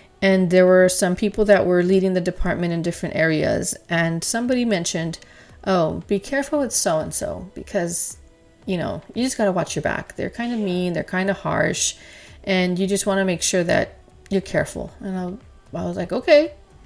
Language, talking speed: English, 195 wpm